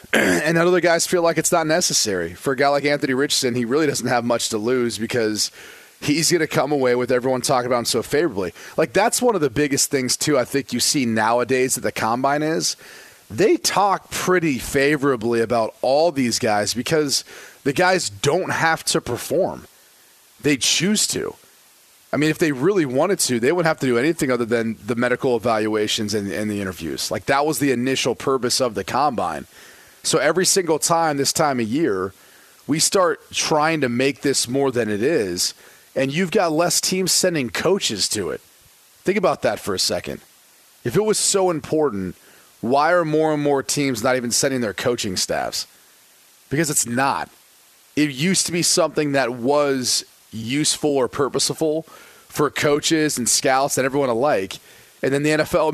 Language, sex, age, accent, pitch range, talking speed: English, male, 30-49, American, 120-155 Hz, 185 wpm